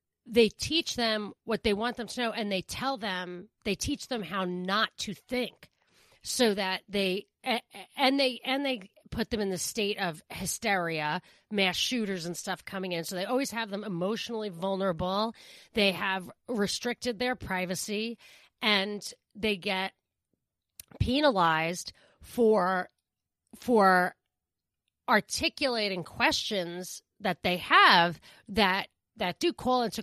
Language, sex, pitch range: English, female, 185-235 Hz